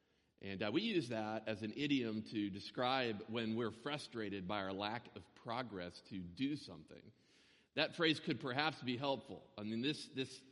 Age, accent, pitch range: 50-69, American, 105-135 Hz